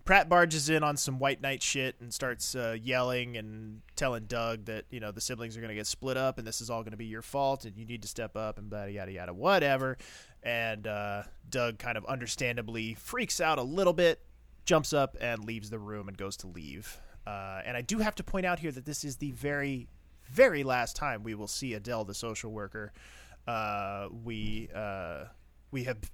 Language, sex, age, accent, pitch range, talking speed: English, male, 30-49, American, 105-135 Hz, 220 wpm